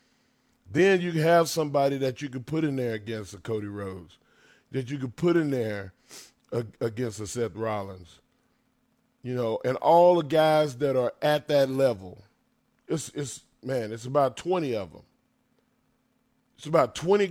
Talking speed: 165 wpm